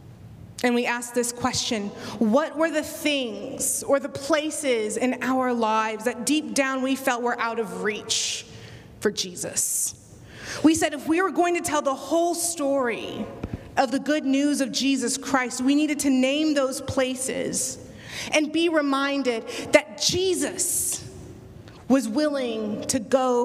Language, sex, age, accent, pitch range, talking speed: English, female, 30-49, American, 230-280 Hz, 150 wpm